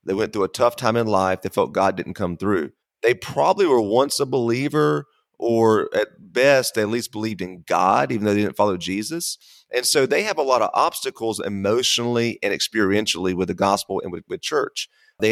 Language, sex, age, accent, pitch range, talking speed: English, male, 30-49, American, 105-130 Hz, 210 wpm